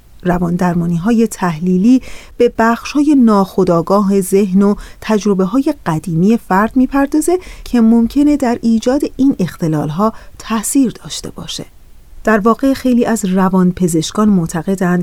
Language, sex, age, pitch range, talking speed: Persian, female, 30-49, 180-255 Hz, 130 wpm